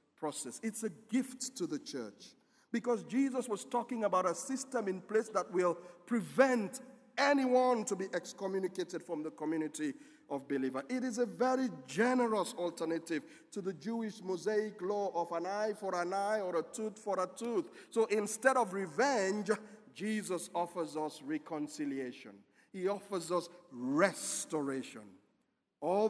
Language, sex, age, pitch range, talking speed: English, male, 50-69, 175-245 Hz, 145 wpm